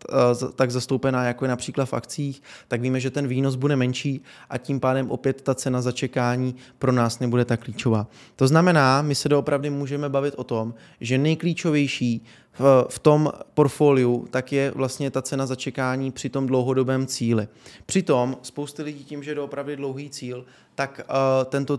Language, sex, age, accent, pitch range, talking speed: Czech, male, 20-39, native, 125-140 Hz, 170 wpm